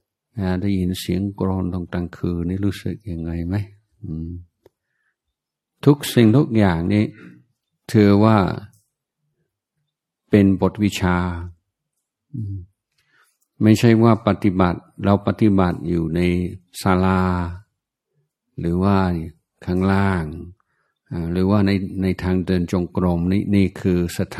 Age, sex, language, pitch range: 60-79, male, Thai, 90-110 Hz